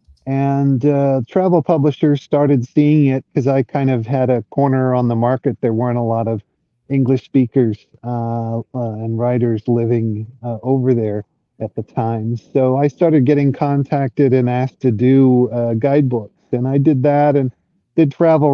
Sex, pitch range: male, 120-140 Hz